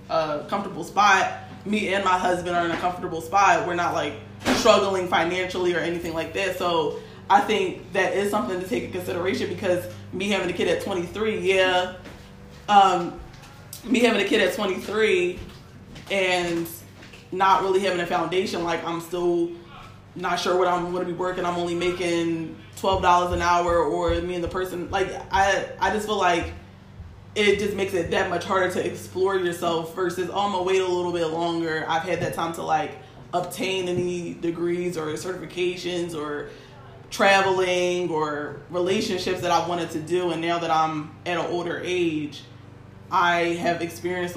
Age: 20-39